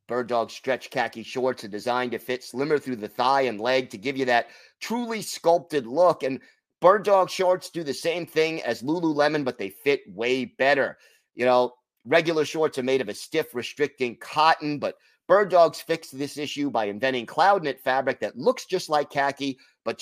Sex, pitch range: male, 125-155 Hz